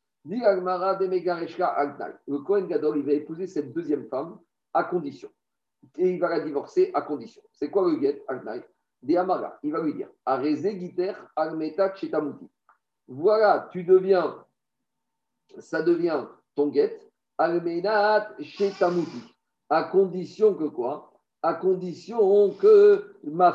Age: 50-69